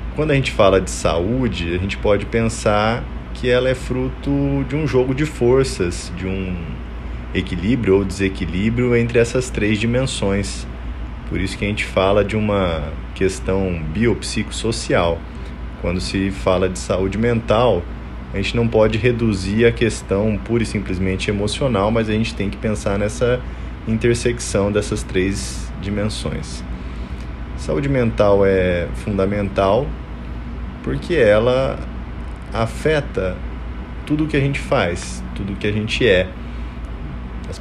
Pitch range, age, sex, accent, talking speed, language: 80-115 Hz, 20-39, male, Brazilian, 135 wpm, Portuguese